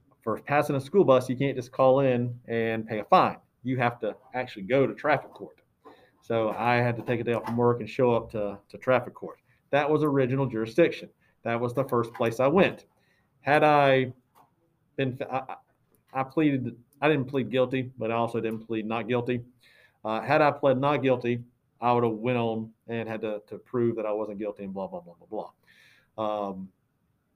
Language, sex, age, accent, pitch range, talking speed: English, male, 40-59, American, 115-140 Hz, 205 wpm